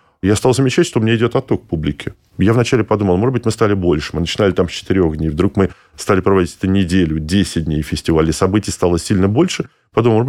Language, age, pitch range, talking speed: Russian, 20-39, 95-125 Hz, 220 wpm